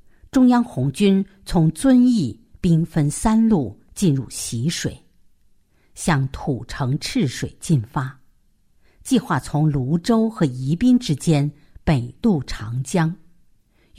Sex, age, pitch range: female, 50-69, 125-190 Hz